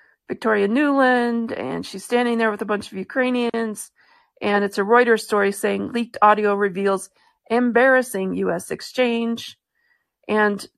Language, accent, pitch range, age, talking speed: English, American, 205-250 Hz, 40-59, 135 wpm